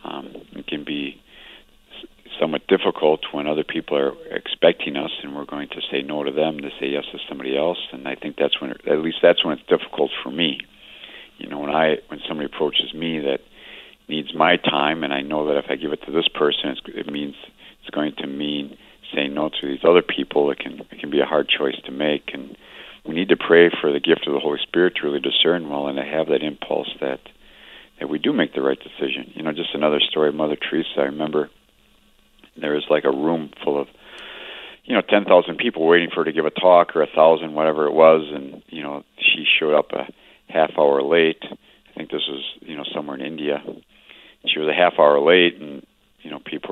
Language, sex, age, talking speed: English, male, 50-69, 225 wpm